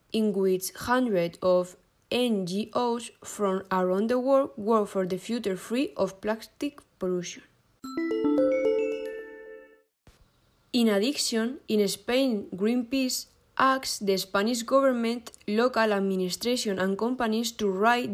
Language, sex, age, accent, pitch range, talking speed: Spanish, female, 20-39, Spanish, 185-245 Hz, 105 wpm